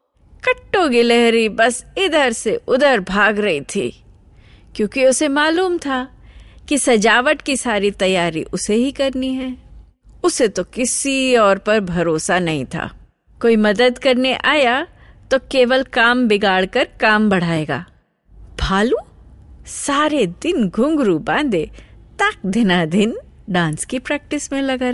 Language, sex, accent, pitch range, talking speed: Hindi, female, native, 200-275 Hz, 125 wpm